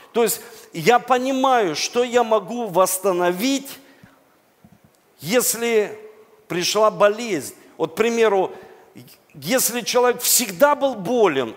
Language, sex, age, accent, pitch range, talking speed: Russian, male, 50-69, native, 180-230 Hz, 100 wpm